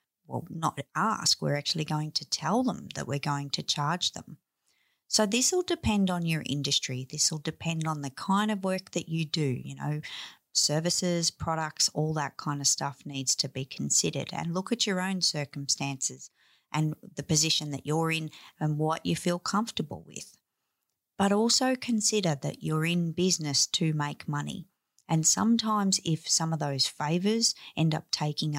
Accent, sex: Australian, female